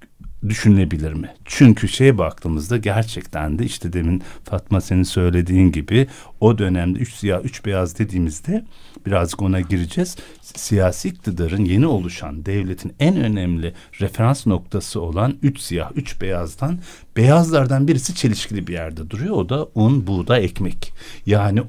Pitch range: 95-135 Hz